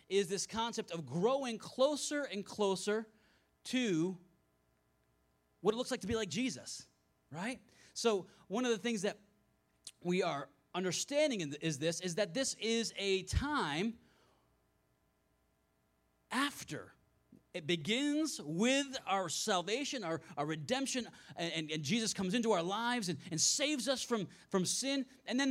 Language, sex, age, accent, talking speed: English, male, 30-49, American, 145 wpm